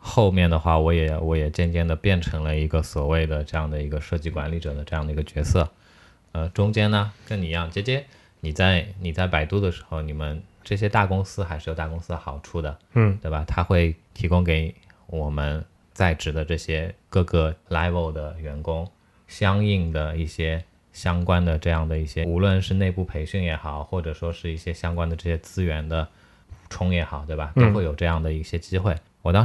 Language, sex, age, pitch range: Chinese, male, 20-39, 80-95 Hz